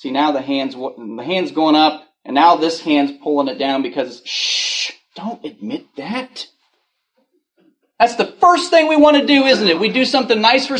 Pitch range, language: 180-270 Hz, English